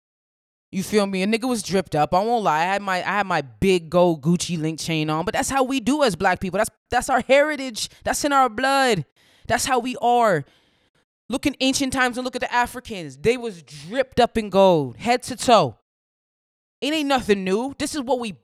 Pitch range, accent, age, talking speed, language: 190-270 Hz, American, 20-39, 225 wpm, English